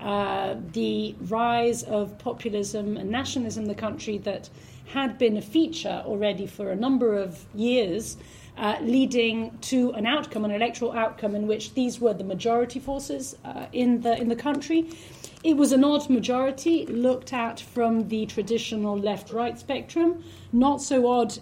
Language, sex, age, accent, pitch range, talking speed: English, female, 40-59, British, 210-250 Hz, 155 wpm